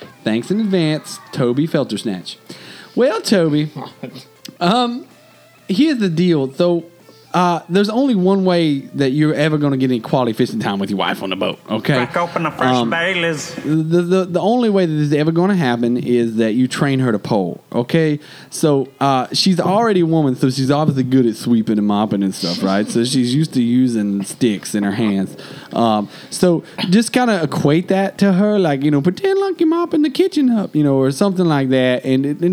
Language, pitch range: English, 120-180 Hz